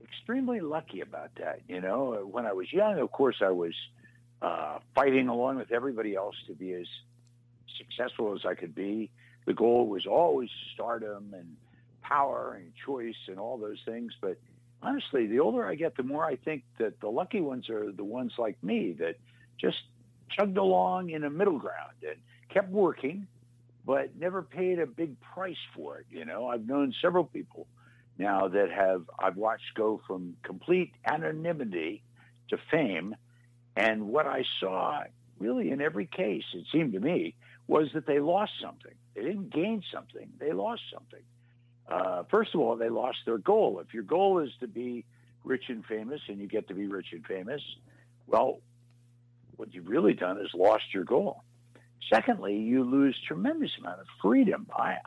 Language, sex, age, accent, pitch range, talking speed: English, male, 60-79, American, 115-145 Hz, 175 wpm